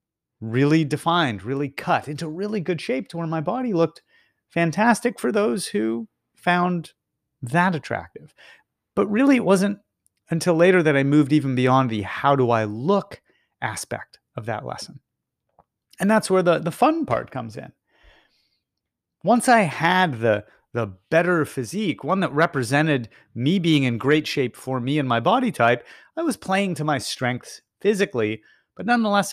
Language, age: English, 30-49